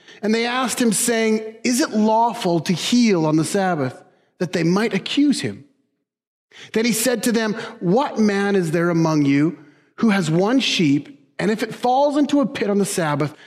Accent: American